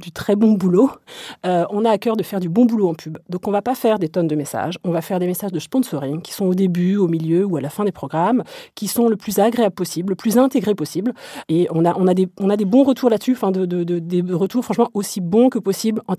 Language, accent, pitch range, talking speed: French, French, 170-225 Hz, 285 wpm